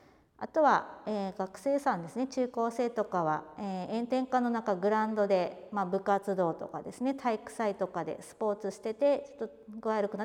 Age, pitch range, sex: 40-59, 190-260 Hz, female